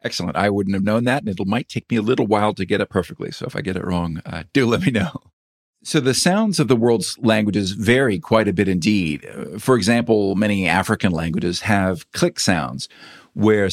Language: English